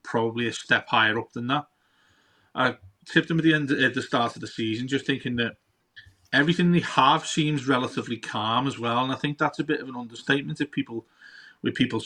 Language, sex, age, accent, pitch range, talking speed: English, male, 30-49, British, 115-145 Hz, 215 wpm